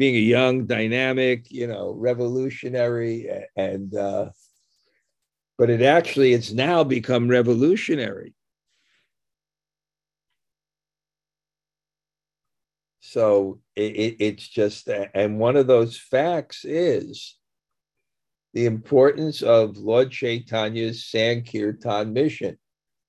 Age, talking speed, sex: 50-69, 85 wpm, male